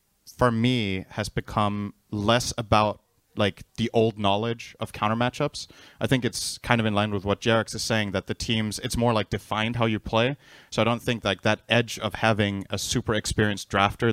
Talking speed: 205 wpm